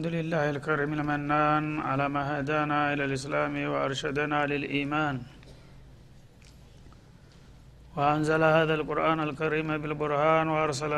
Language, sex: Amharic, male